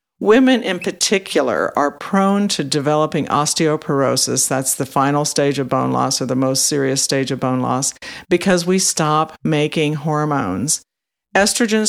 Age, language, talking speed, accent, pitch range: 50-69, English, 145 wpm, American, 140-180 Hz